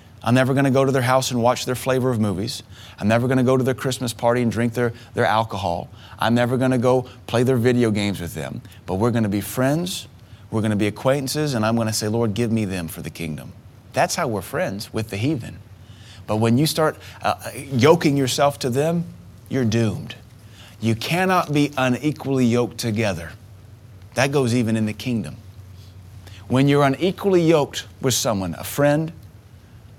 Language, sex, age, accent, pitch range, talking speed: English, male, 30-49, American, 105-130 Hz, 200 wpm